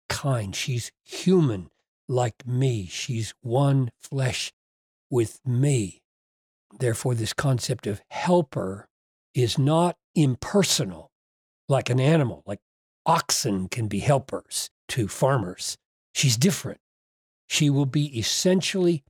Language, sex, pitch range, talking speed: English, male, 120-175 Hz, 105 wpm